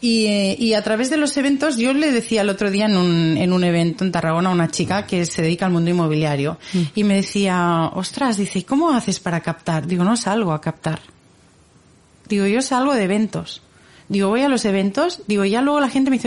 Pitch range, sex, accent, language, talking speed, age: 175-245 Hz, female, Spanish, Spanish, 225 wpm, 30-49